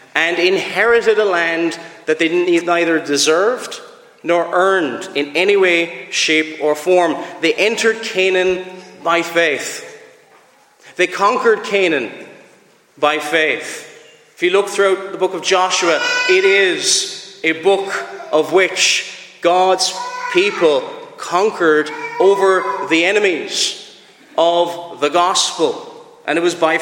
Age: 30-49